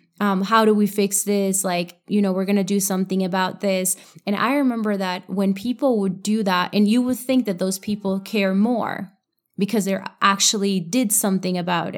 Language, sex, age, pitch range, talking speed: English, female, 20-39, 190-220 Hz, 200 wpm